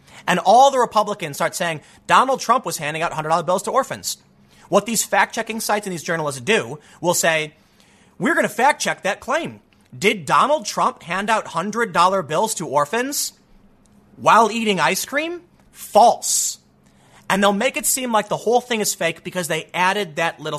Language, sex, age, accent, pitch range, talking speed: English, male, 30-49, American, 160-225 Hz, 175 wpm